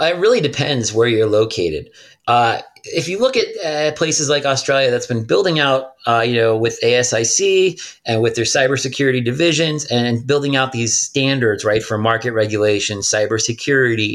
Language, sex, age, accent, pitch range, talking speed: English, male, 30-49, American, 110-140 Hz, 165 wpm